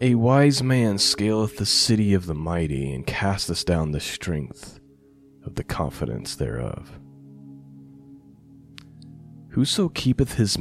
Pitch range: 80-115 Hz